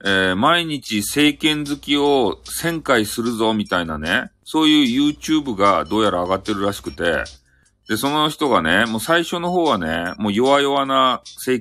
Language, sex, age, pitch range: Japanese, male, 40-59, 95-135 Hz